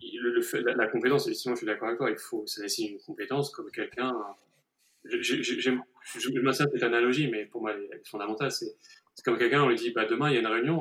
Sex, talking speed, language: male, 240 wpm, French